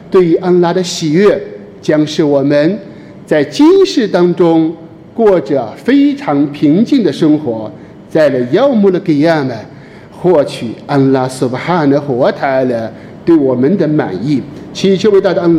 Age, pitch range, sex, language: 50-69, 140-185 Hz, male, Chinese